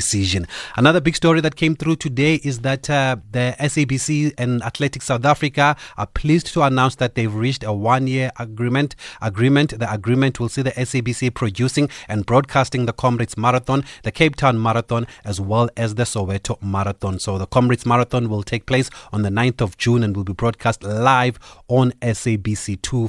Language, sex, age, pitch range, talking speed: English, male, 30-49, 105-125 Hz, 180 wpm